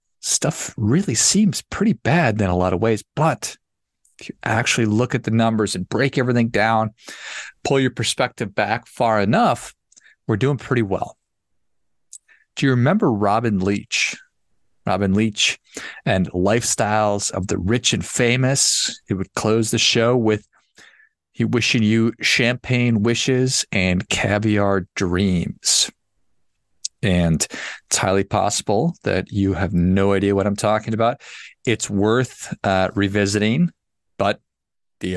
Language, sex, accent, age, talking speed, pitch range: English, male, American, 40-59, 135 wpm, 95-120 Hz